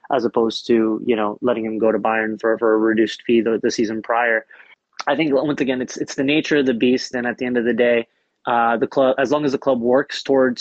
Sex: male